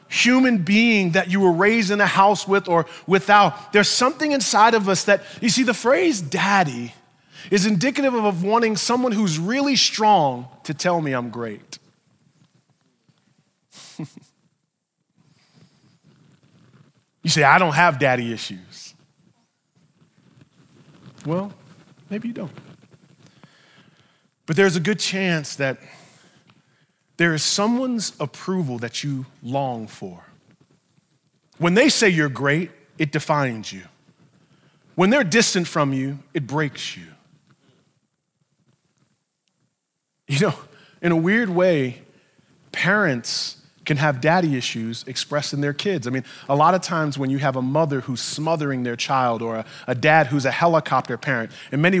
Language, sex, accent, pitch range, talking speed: English, male, American, 140-195 Hz, 135 wpm